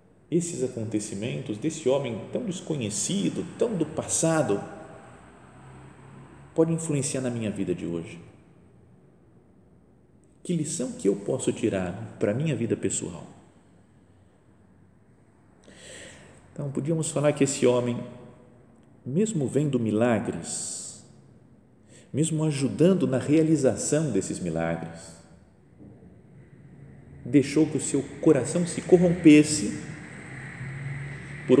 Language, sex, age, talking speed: Portuguese, male, 50-69, 95 wpm